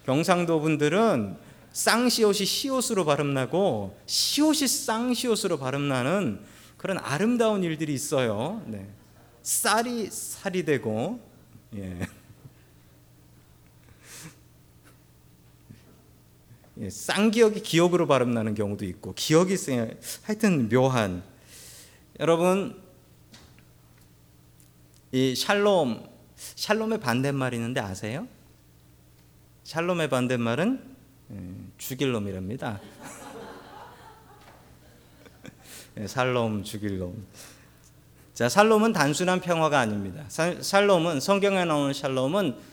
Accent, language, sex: native, Korean, male